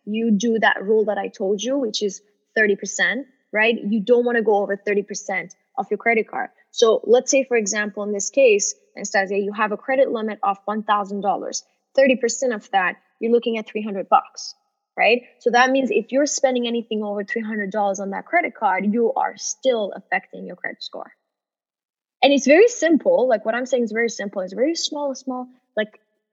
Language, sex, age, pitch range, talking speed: English, female, 10-29, 205-255 Hz, 195 wpm